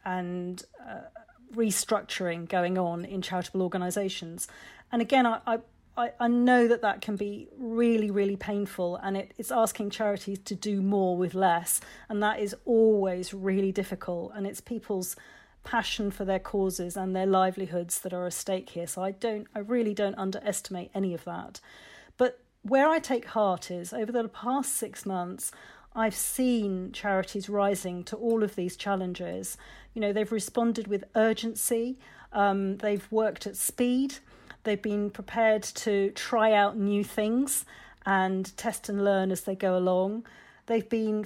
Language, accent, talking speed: English, British, 160 wpm